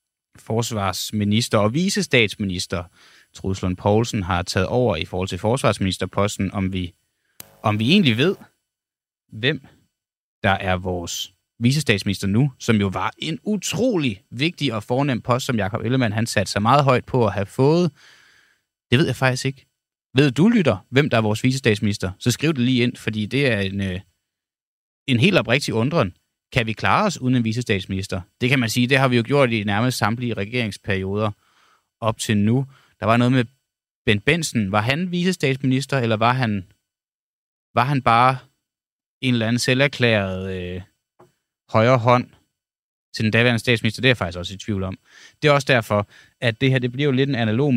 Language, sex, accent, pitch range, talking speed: Danish, male, native, 100-130 Hz, 175 wpm